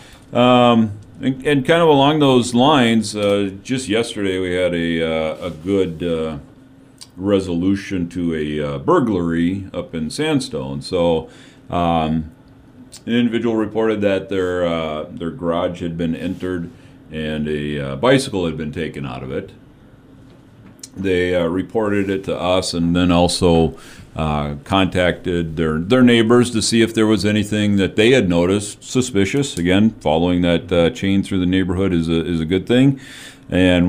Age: 40-59